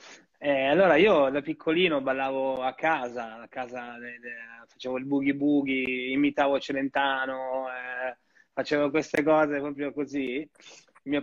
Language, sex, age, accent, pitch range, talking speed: Italian, male, 20-39, native, 120-145 Hz, 120 wpm